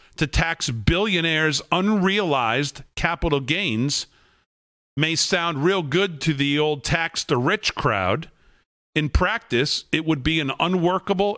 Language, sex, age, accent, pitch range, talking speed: English, male, 50-69, American, 140-185 Hz, 125 wpm